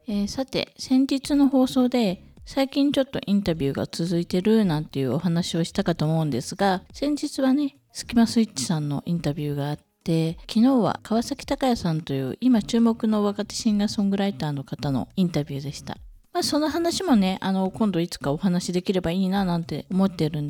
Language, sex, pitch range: Japanese, female, 170-240 Hz